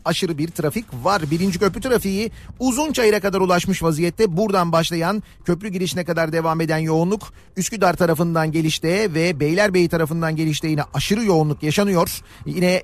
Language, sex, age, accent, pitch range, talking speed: Turkish, male, 40-59, native, 160-205 Hz, 150 wpm